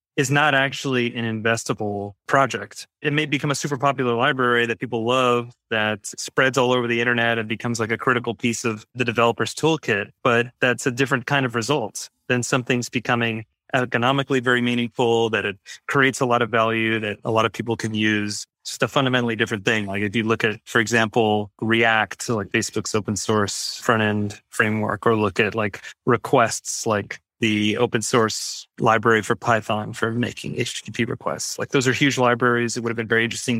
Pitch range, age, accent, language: 110-125 Hz, 30-49, American, English